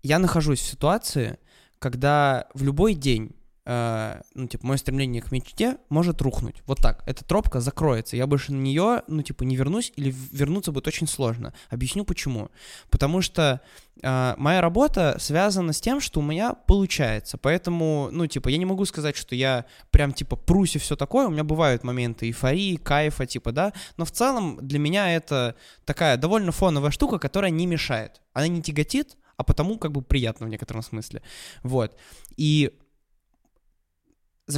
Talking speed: 170 wpm